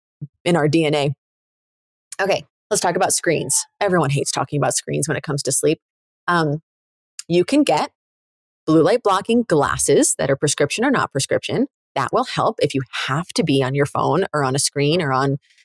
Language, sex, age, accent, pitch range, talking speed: English, female, 30-49, American, 150-225 Hz, 190 wpm